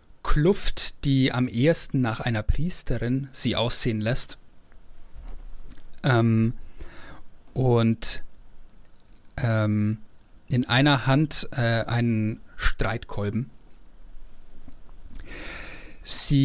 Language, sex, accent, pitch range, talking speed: German, male, German, 110-140 Hz, 70 wpm